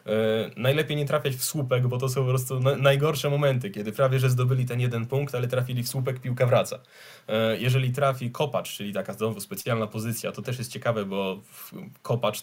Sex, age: male, 20-39